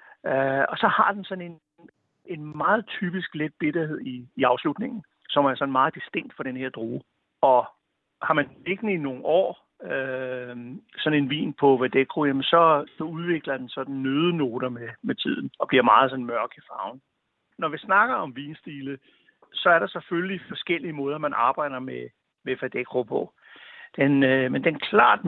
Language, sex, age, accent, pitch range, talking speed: Danish, male, 60-79, native, 130-180 Hz, 180 wpm